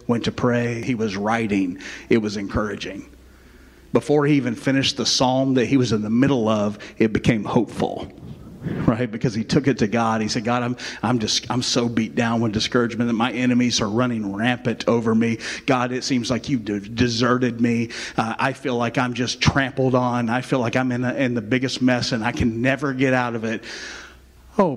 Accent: American